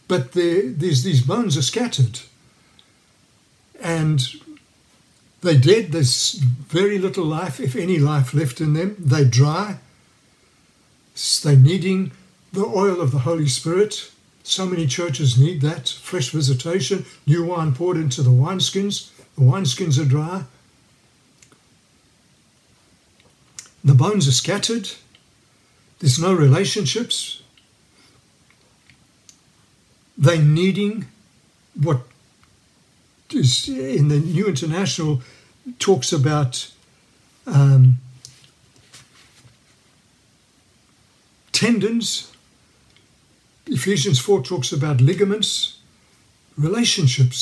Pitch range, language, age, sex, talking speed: 130-185 Hz, English, 60-79, male, 90 wpm